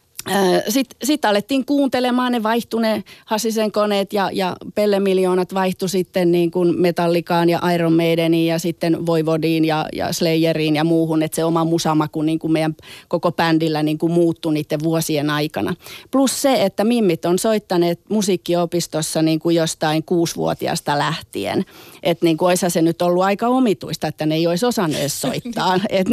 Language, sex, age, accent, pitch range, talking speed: Finnish, female, 30-49, native, 160-195 Hz, 155 wpm